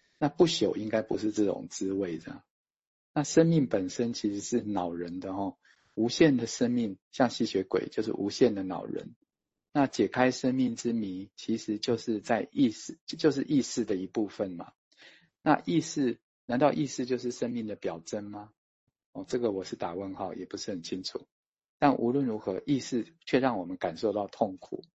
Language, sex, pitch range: Chinese, male, 95-130 Hz